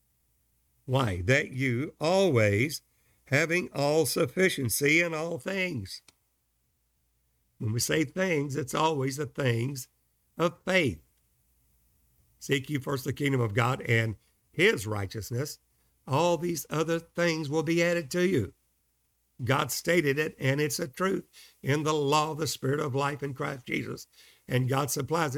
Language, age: English, 60-79